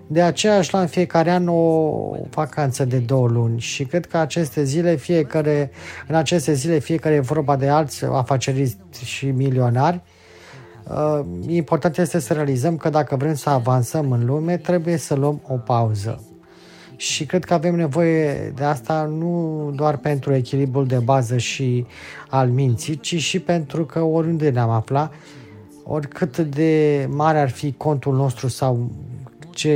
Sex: male